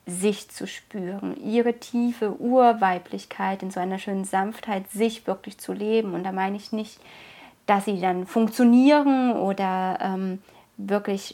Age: 30-49